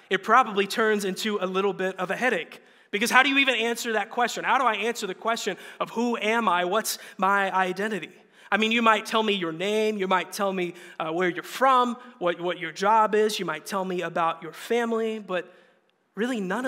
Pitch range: 180-220 Hz